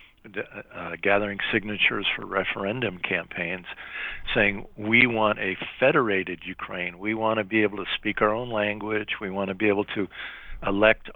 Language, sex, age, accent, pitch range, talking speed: English, male, 50-69, American, 95-110 Hz, 155 wpm